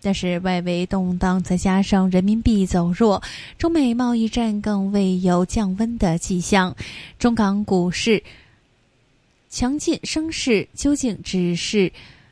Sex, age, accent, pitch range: female, 20-39, native, 180-220 Hz